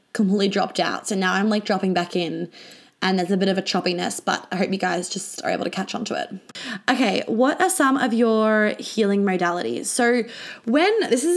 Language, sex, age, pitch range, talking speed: English, female, 20-39, 195-245 Hz, 220 wpm